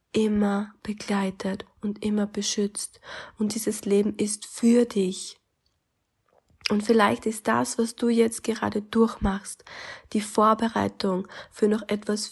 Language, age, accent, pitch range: German, 20-39, German, 200-230 Hz